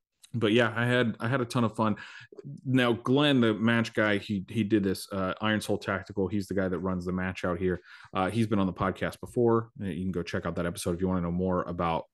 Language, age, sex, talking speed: English, 30-49, male, 260 wpm